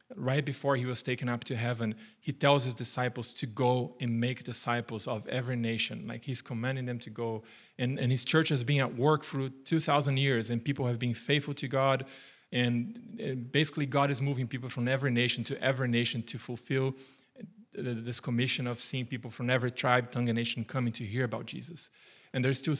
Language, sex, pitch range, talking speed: English, male, 120-135 Hz, 205 wpm